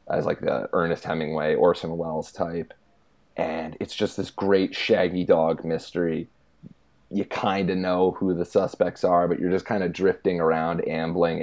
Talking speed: 170 wpm